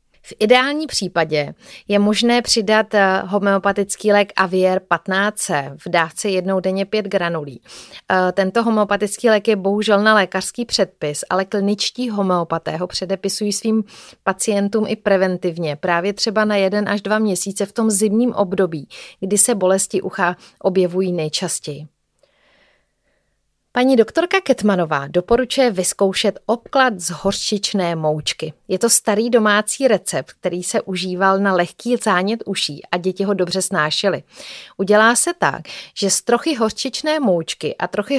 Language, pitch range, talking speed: Czech, 185-225 Hz, 135 wpm